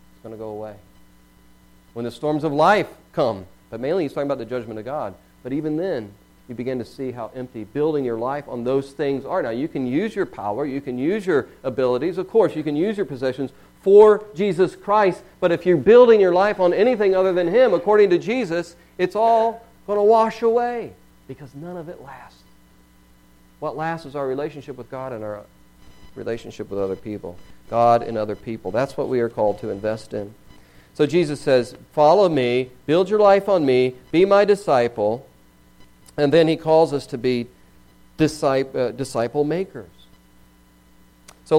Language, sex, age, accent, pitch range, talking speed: English, male, 40-59, American, 105-165 Hz, 190 wpm